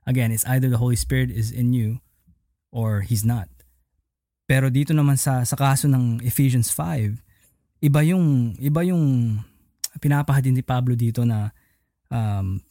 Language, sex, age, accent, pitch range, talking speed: Filipino, male, 20-39, native, 110-130 Hz, 150 wpm